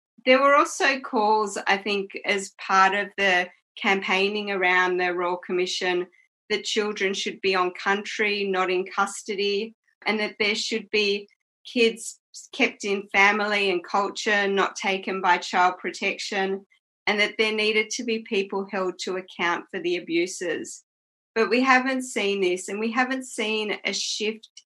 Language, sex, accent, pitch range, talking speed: English, female, Australian, 190-225 Hz, 155 wpm